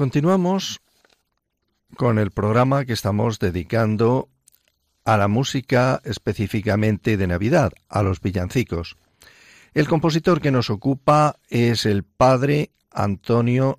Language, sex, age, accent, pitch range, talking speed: Spanish, male, 50-69, Spanish, 110-145 Hz, 110 wpm